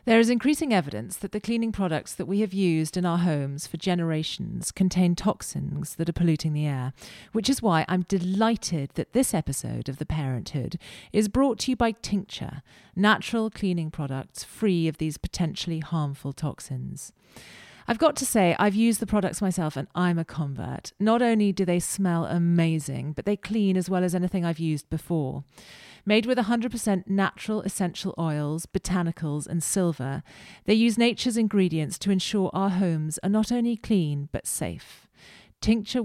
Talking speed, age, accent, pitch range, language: 170 wpm, 40-59, British, 155-210 Hz, English